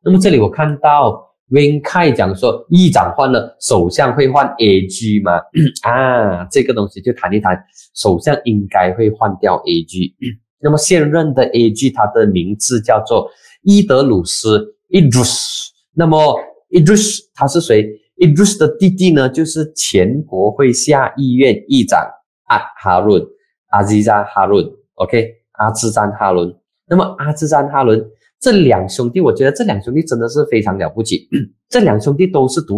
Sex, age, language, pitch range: male, 20-39, Chinese, 110-175 Hz